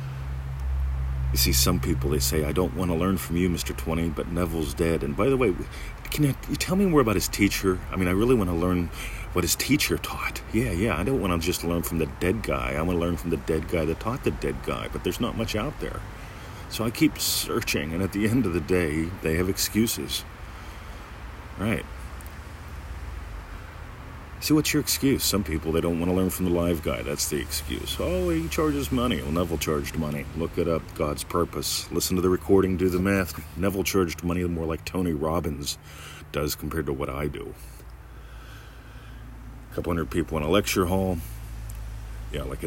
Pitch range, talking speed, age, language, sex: 75-95 Hz, 205 wpm, 40-59, English, male